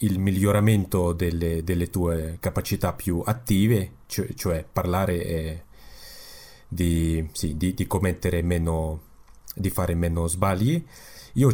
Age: 30-49